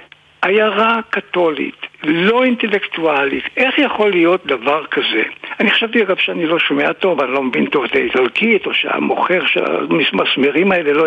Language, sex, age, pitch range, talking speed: Hebrew, male, 60-79, 185-295 Hz, 150 wpm